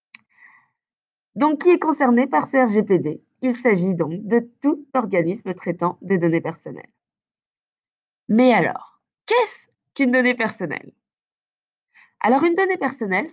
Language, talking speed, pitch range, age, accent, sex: French, 120 wpm, 180-265 Hz, 20-39, French, female